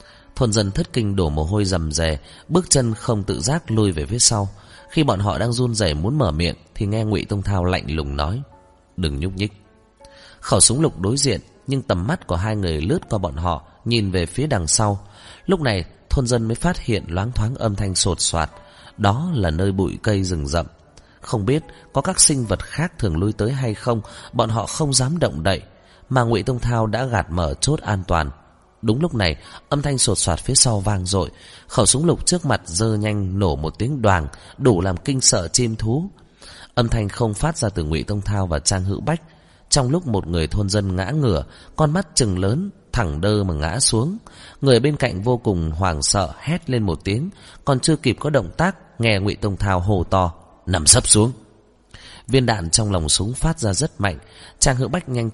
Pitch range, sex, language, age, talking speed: 95-130 Hz, male, Vietnamese, 30-49, 220 wpm